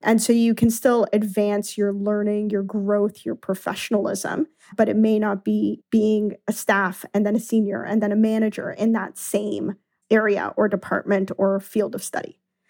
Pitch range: 205-225 Hz